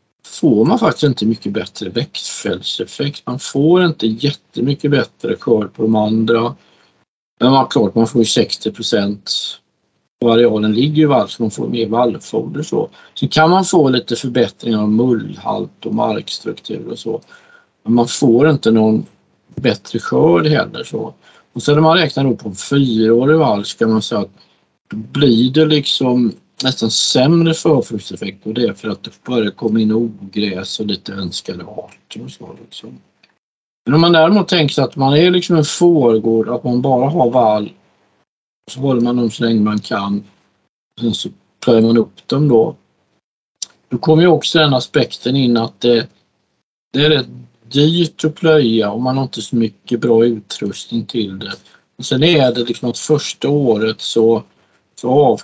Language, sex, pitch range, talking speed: Swedish, male, 110-145 Hz, 180 wpm